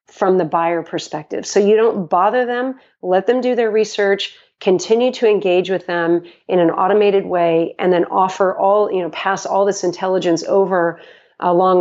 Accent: American